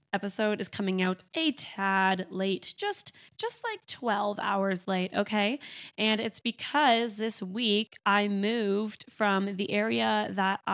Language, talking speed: English, 140 wpm